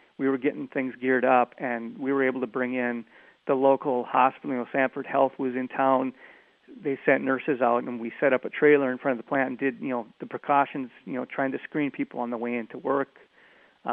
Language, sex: English, male